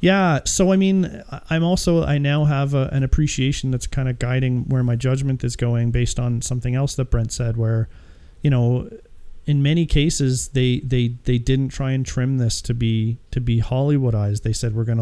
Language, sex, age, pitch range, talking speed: English, male, 30-49, 115-130 Hz, 205 wpm